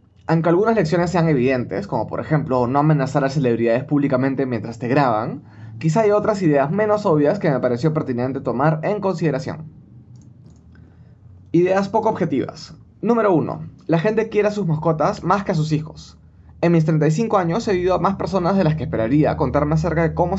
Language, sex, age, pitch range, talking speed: Spanish, male, 20-39, 130-175 Hz, 180 wpm